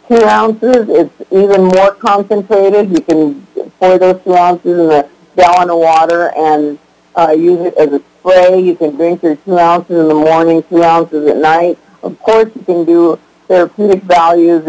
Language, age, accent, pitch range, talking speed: English, 50-69, American, 160-190 Hz, 175 wpm